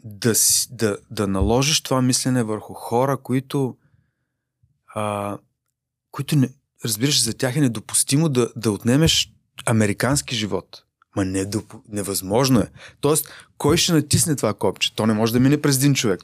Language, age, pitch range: Bulgarian, 30-49, 115-145 Hz